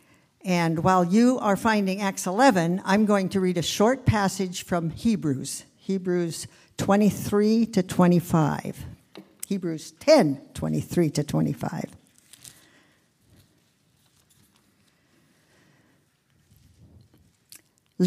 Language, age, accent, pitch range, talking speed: English, 60-79, American, 165-225 Hz, 85 wpm